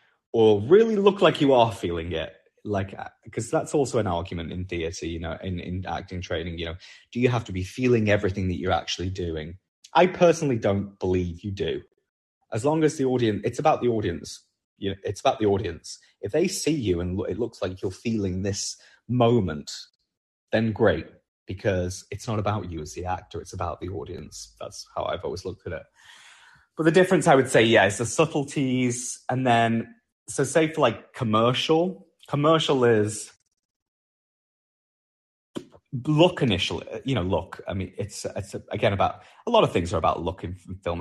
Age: 30-49